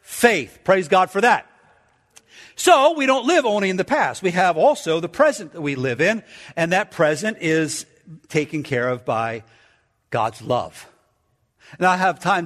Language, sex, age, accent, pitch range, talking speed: English, male, 50-69, American, 145-205 Hz, 175 wpm